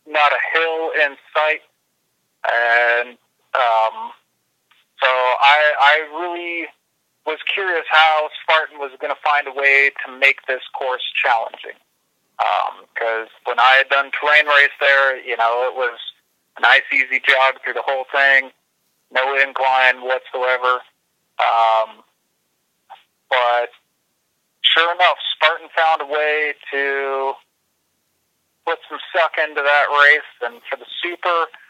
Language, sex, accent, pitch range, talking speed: English, male, American, 125-150 Hz, 125 wpm